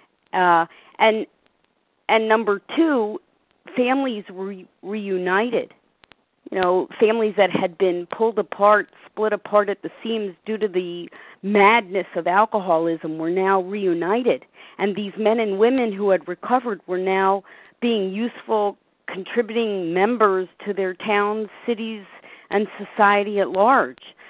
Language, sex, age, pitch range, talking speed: English, female, 40-59, 190-235 Hz, 130 wpm